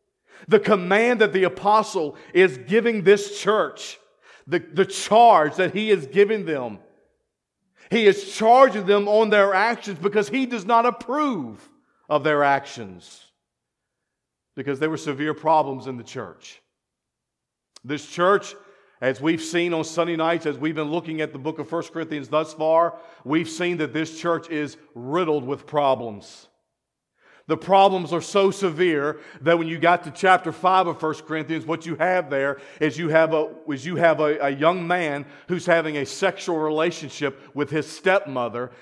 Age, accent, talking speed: 50-69, American, 165 wpm